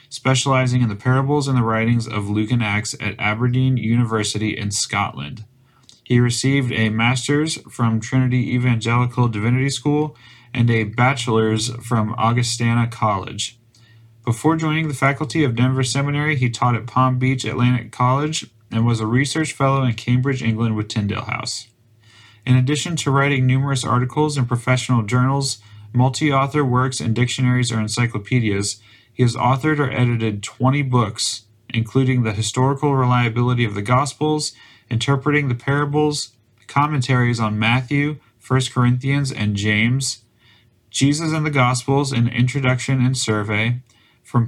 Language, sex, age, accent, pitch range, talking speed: English, male, 30-49, American, 115-135 Hz, 140 wpm